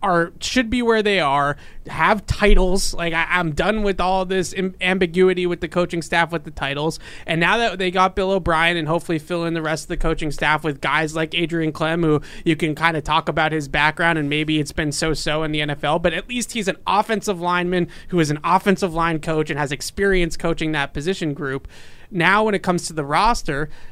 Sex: male